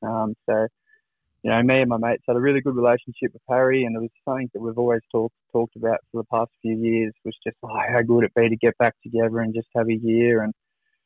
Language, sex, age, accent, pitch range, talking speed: English, male, 20-39, Australian, 115-125 Hz, 255 wpm